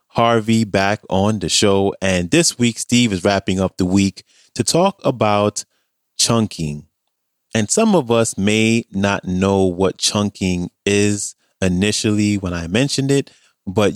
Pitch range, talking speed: 90-110 Hz, 145 wpm